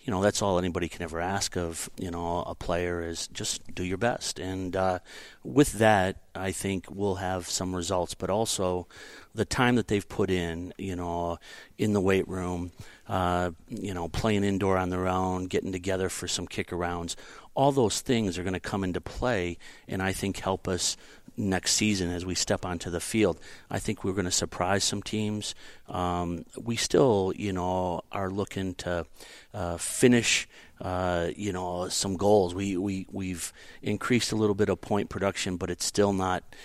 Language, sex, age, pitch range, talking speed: English, male, 40-59, 90-100 Hz, 190 wpm